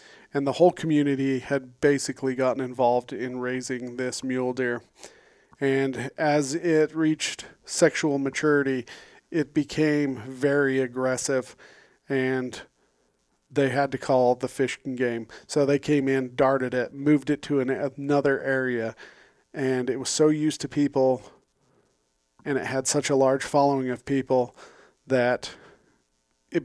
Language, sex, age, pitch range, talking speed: English, male, 40-59, 120-145 Hz, 140 wpm